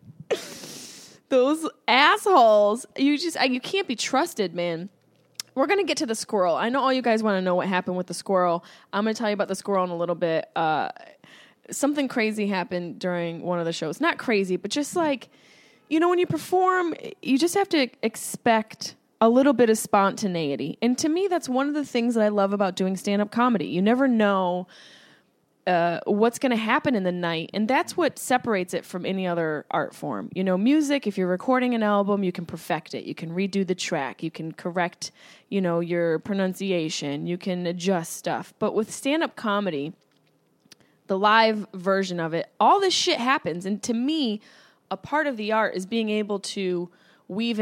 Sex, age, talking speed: female, 20-39, 200 wpm